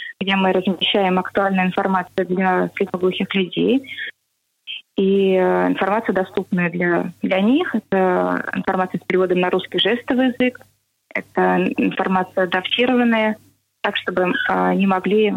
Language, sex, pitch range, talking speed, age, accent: Russian, female, 185-220 Hz, 115 wpm, 20-39, native